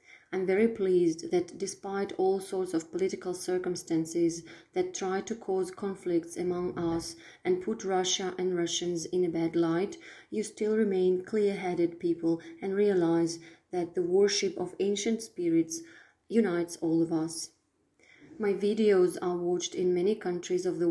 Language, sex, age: Russian, female, 30-49